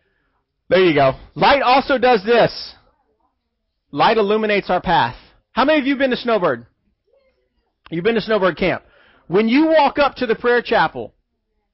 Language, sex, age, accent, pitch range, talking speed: English, male, 40-59, American, 180-250 Hz, 165 wpm